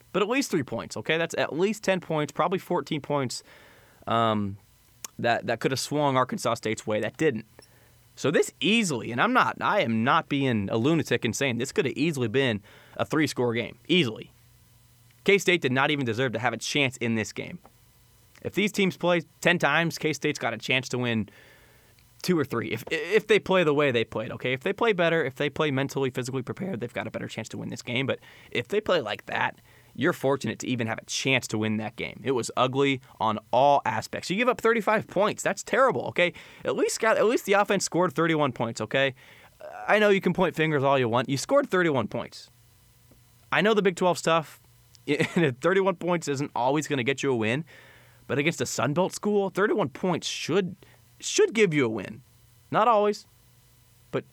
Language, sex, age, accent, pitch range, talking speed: English, male, 20-39, American, 120-165 Hz, 210 wpm